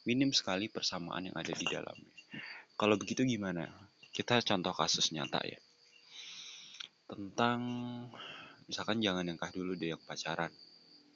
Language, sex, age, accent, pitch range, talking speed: Indonesian, male, 20-39, native, 90-110 Hz, 125 wpm